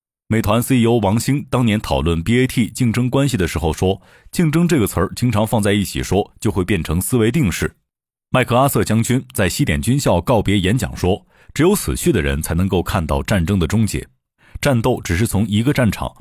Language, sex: Chinese, male